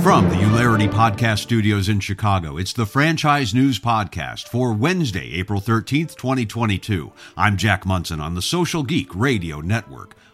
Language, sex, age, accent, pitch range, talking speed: English, male, 50-69, American, 90-115 Hz, 150 wpm